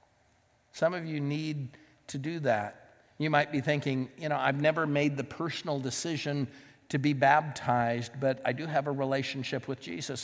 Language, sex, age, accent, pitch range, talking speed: English, male, 50-69, American, 125-145 Hz, 175 wpm